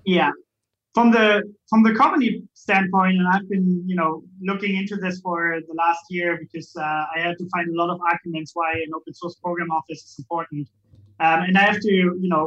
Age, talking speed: 20-39, 210 wpm